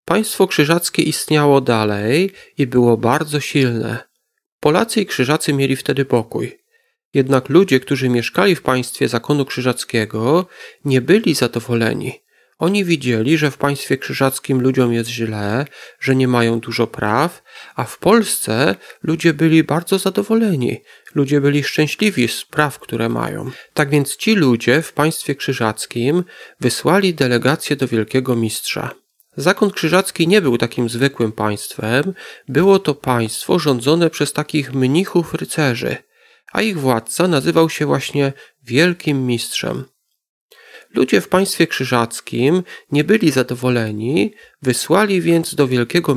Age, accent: 40-59, native